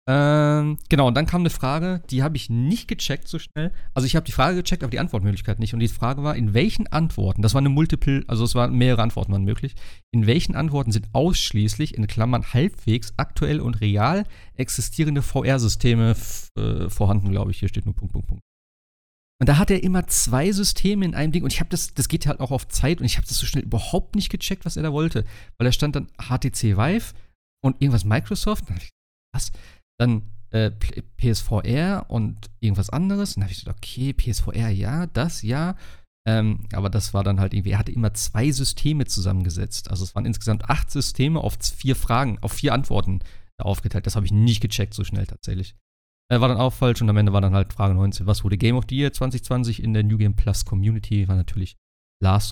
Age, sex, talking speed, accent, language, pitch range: 40-59, male, 215 wpm, German, German, 100-140 Hz